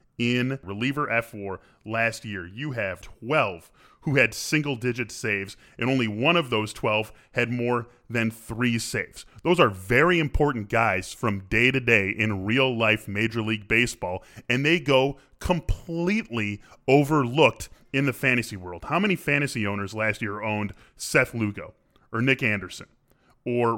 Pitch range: 110-140 Hz